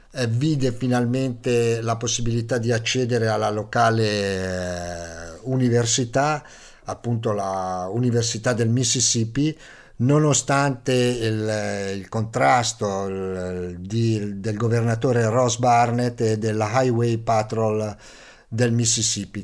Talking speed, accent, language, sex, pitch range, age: 95 wpm, native, Italian, male, 110-125 Hz, 50-69